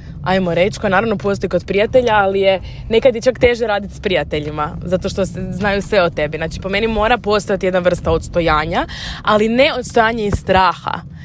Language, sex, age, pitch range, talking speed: Croatian, female, 20-39, 175-215 Hz, 180 wpm